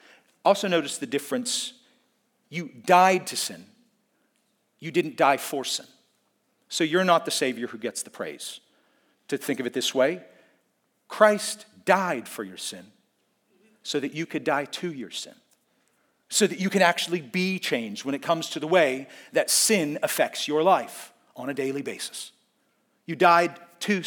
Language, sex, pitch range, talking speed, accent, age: English, male, 140-215 Hz, 165 wpm, American, 40-59